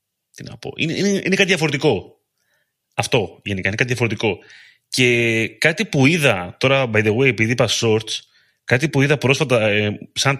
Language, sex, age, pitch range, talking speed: Greek, male, 30-49, 110-150 Hz, 175 wpm